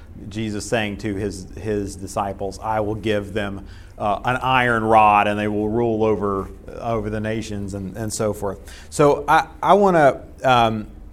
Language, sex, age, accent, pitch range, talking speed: English, male, 30-49, American, 100-130 Hz, 175 wpm